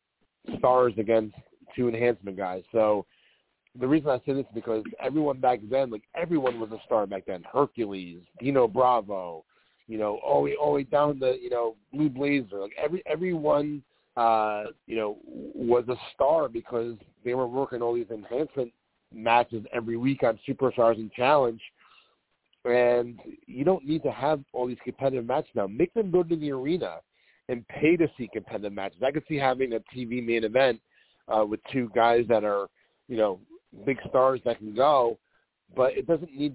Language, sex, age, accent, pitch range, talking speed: English, male, 40-59, American, 115-135 Hz, 180 wpm